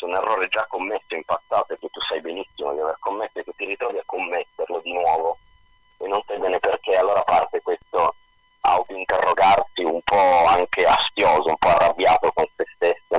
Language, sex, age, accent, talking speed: Italian, male, 30-49, native, 190 wpm